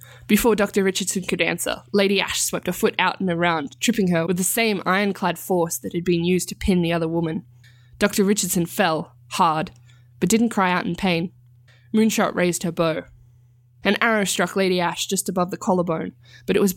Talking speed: 195 wpm